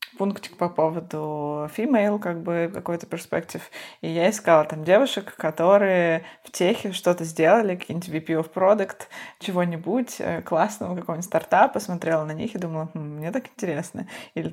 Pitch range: 165-210 Hz